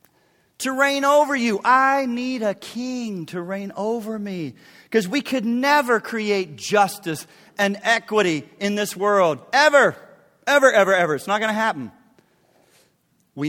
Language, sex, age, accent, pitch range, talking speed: English, male, 40-59, American, 160-220 Hz, 145 wpm